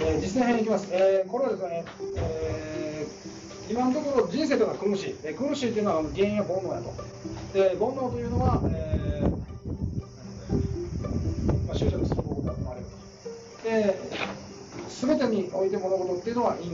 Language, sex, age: Japanese, male, 40-59